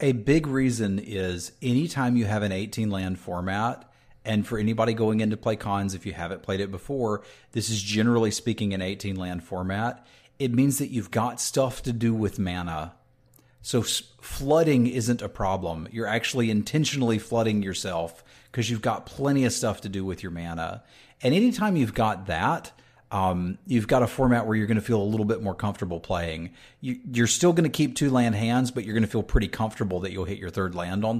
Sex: male